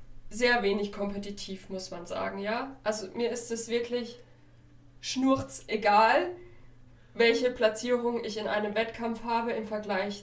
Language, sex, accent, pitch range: German, female, German, 205-235 Hz